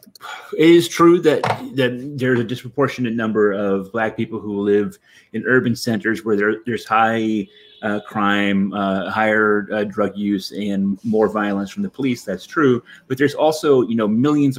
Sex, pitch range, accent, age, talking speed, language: male, 100-125 Hz, American, 30-49, 175 wpm, English